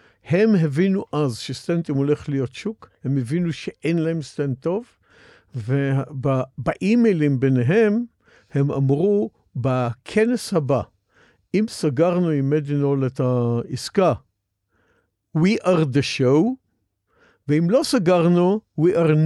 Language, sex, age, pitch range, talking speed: Hebrew, male, 50-69, 125-185 Hz, 110 wpm